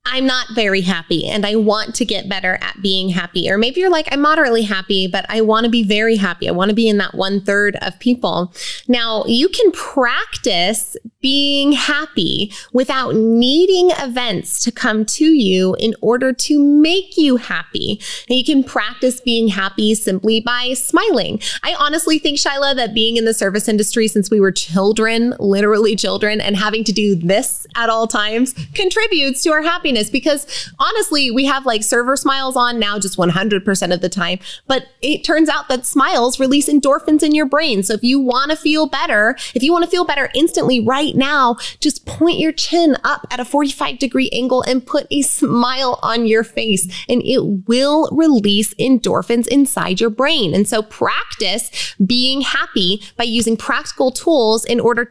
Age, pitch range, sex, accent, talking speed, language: 20-39, 210-285 Hz, female, American, 185 wpm, English